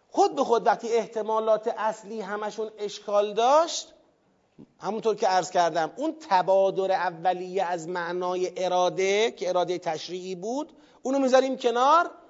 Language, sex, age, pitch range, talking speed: Persian, male, 40-59, 180-255 Hz, 125 wpm